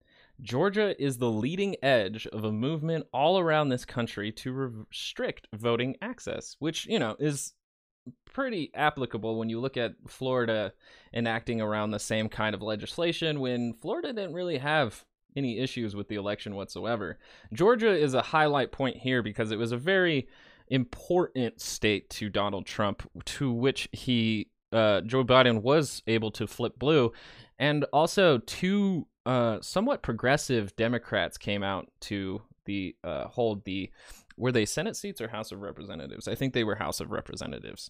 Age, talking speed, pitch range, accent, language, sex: 20-39, 160 wpm, 110-135 Hz, American, English, male